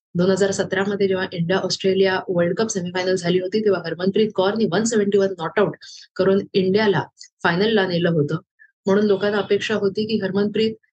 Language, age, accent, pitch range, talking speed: Marathi, 30-49, native, 175-210 Hz, 165 wpm